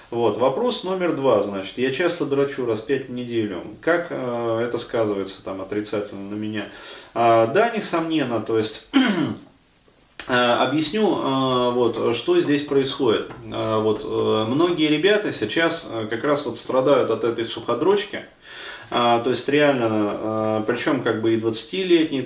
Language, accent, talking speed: Russian, native, 150 wpm